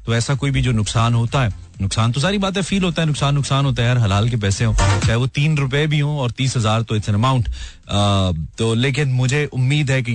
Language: Hindi